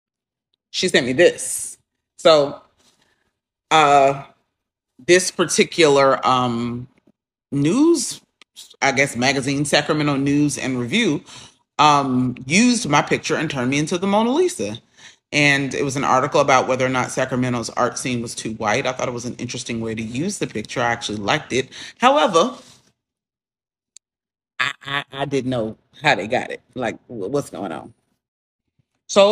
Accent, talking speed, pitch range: American, 150 wpm, 125-155 Hz